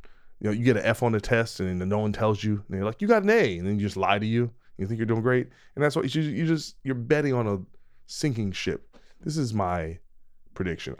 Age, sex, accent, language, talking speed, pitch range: 20-39, male, American, English, 275 wpm, 95-135 Hz